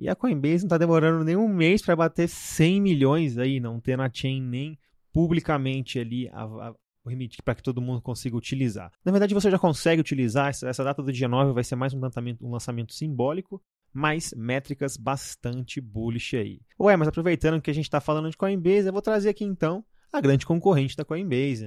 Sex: male